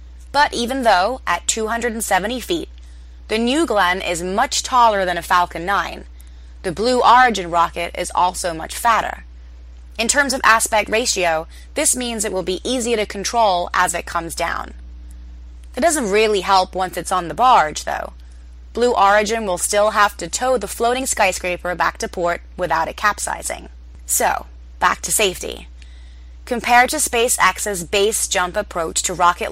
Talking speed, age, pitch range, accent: 160 wpm, 20-39, 160-220 Hz, American